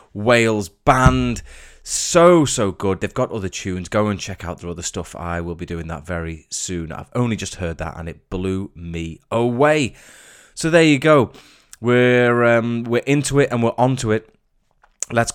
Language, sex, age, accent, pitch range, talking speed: English, male, 20-39, British, 95-125 Hz, 185 wpm